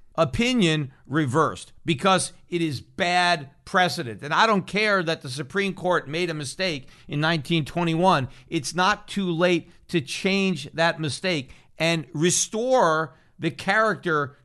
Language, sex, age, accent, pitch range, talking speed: English, male, 50-69, American, 150-185 Hz, 135 wpm